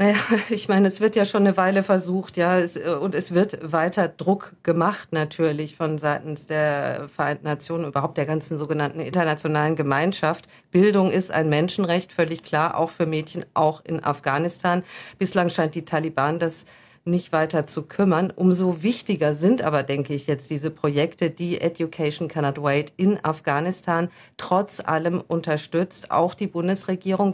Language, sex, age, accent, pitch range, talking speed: German, female, 50-69, German, 155-195 Hz, 160 wpm